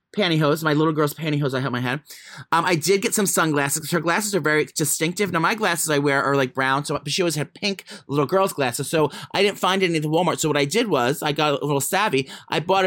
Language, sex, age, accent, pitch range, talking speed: English, male, 30-49, American, 140-180 Hz, 265 wpm